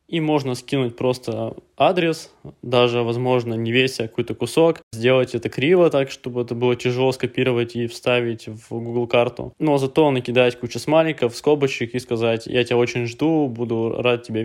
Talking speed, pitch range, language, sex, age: 170 wpm, 115-130 Hz, Russian, male, 20-39